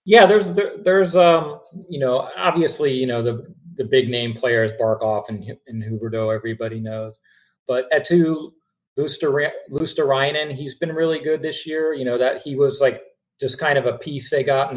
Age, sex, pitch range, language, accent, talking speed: 30-49, male, 115-145 Hz, English, American, 195 wpm